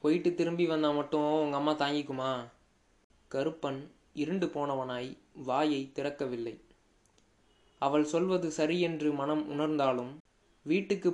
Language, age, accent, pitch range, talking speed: Tamil, 20-39, native, 135-155 Hz, 100 wpm